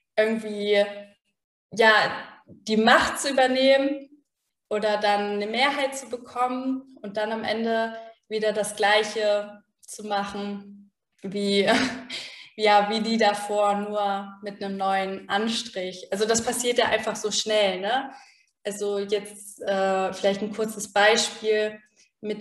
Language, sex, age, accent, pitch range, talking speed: German, female, 20-39, German, 205-235 Hz, 120 wpm